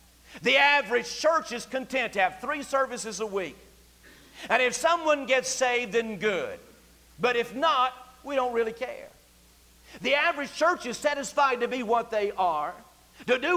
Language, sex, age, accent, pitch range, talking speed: English, male, 50-69, American, 225-305 Hz, 165 wpm